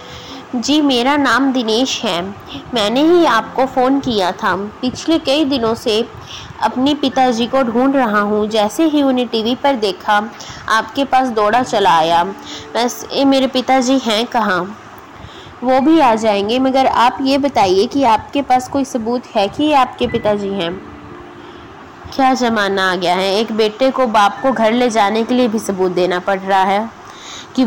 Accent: native